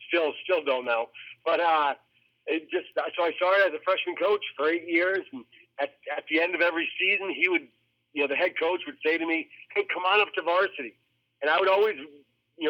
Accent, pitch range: American, 140-170 Hz